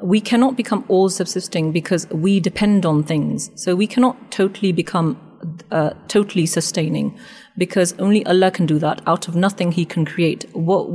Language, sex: English, female